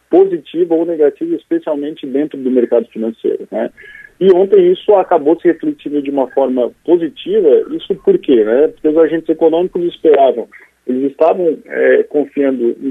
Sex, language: male, Portuguese